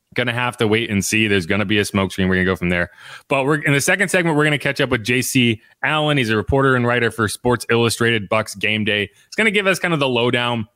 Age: 30-49